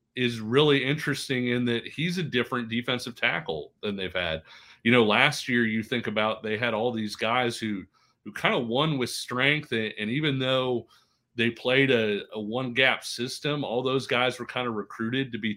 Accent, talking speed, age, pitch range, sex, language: American, 195 wpm, 30-49, 110-125 Hz, male, English